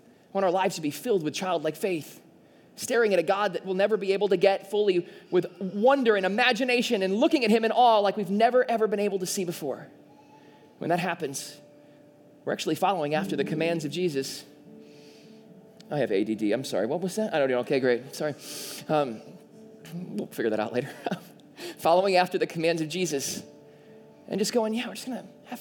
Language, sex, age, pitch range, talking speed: English, male, 20-39, 145-220 Hz, 200 wpm